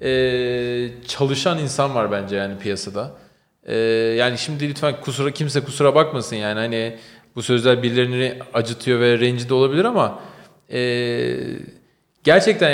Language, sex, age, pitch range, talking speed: Turkish, male, 40-59, 135-175 Hz, 125 wpm